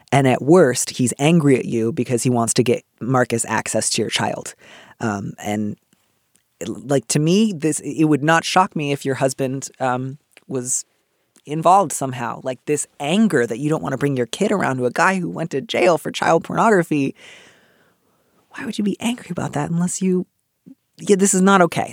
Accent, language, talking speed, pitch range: American, English, 195 wpm, 125-160 Hz